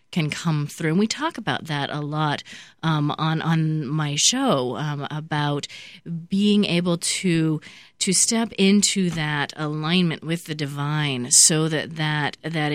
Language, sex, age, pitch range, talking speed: English, female, 30-49, 150-185 Hz, 150 wpm